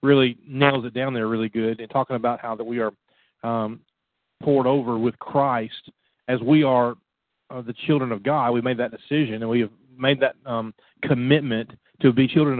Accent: American